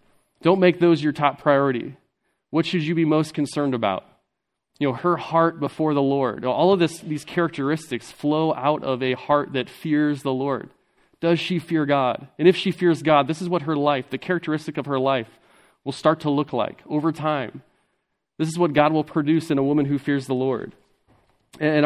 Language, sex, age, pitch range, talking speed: English, male, 30-49, 135-160 Hz, 205 wpm